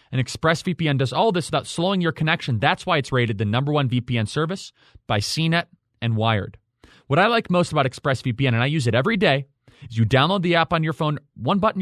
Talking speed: 225 wpm